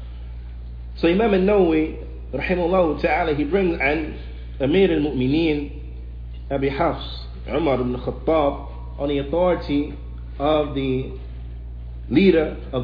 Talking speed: 105 wpm